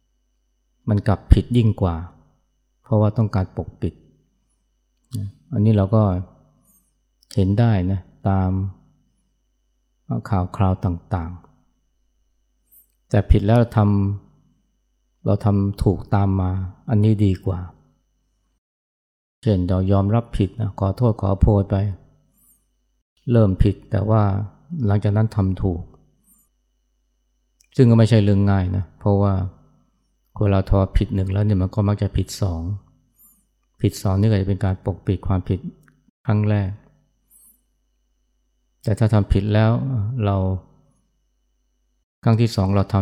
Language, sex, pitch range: Thai, male, 95-105 Hz